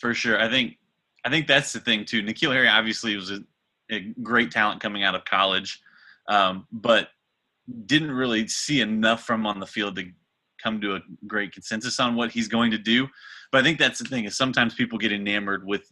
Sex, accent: male, American